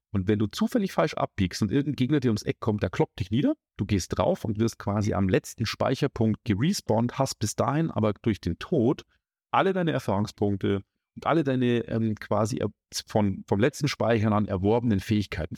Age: 40-59